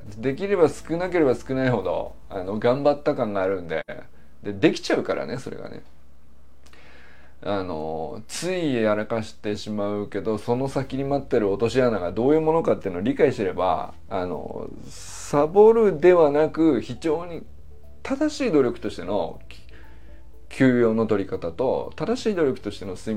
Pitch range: 95-155 Hz